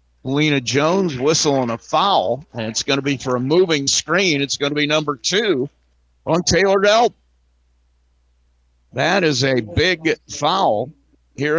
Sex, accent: male, American